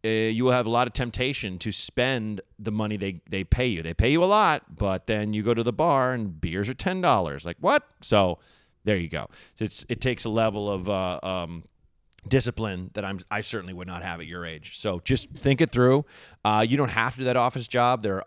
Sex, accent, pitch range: male, American, 95-120 Hz